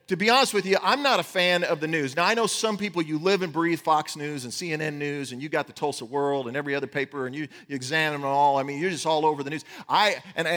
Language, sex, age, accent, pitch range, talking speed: English, male, 40-59, American, 160-235 Hz, 295 wpm